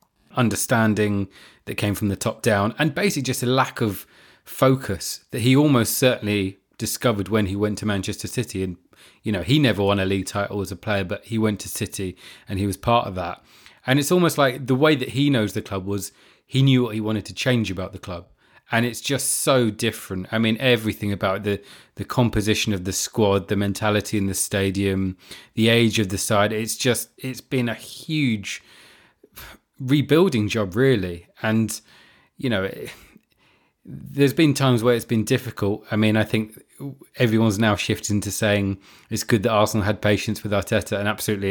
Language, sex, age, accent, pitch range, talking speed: English, male, 30-49, British, 100-120 Hz, 190 wpm